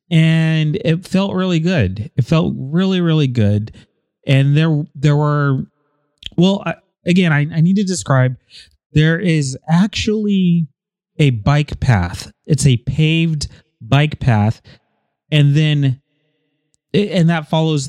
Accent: American